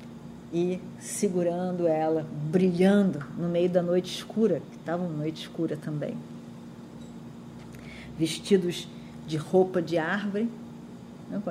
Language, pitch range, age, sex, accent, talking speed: Portuguese, 155-190 Hz, 40-59, female, Brazilian, 110 wpm